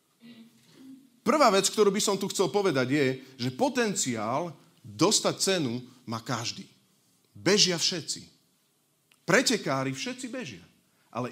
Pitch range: 135-210 Hz